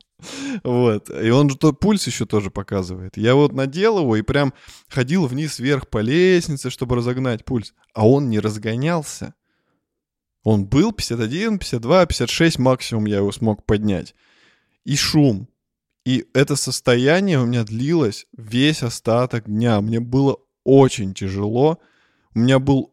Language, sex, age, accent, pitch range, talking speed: Russian, male, 20-39, native, 115-145 Hz, 140 wpm